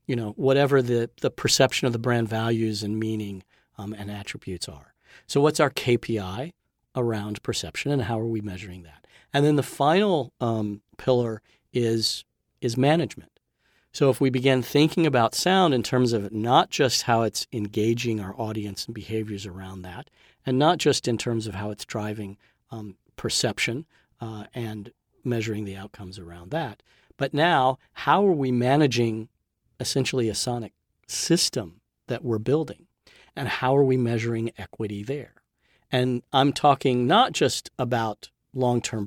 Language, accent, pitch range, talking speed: English, American, 105-130 Hz, 160 wpm